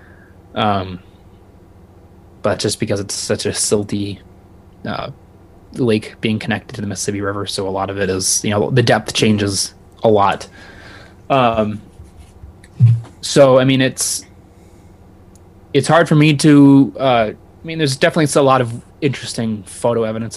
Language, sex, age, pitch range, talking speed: English, male, 20-39, 95-115 Hz, 150 wpm